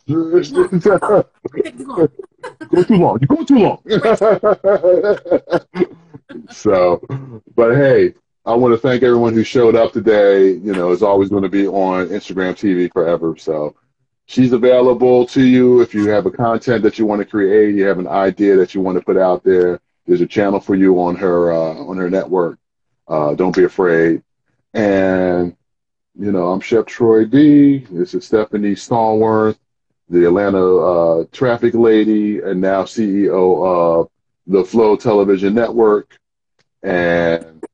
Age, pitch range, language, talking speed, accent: 30-49, 90-125 Hz, English, 155 wpm, American